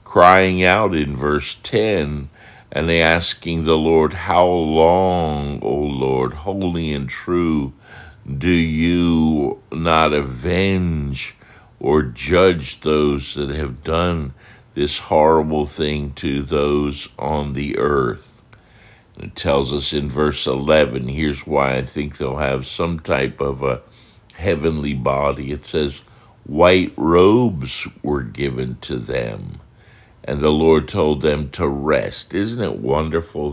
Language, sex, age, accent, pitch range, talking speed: English, male, 60-79, American, 70-85 Hz, 125 wpm